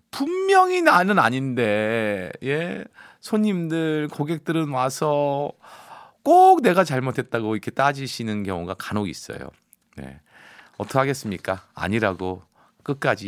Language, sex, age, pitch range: Korean, male, 40-59, 110-185 Hz